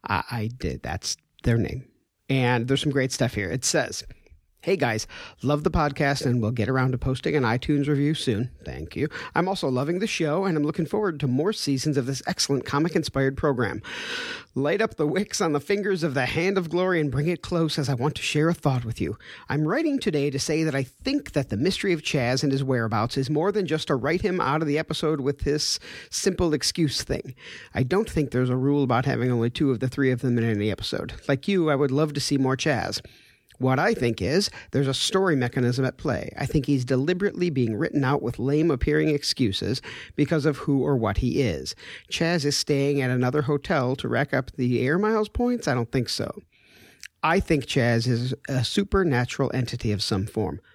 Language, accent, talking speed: English, American, 220 wpm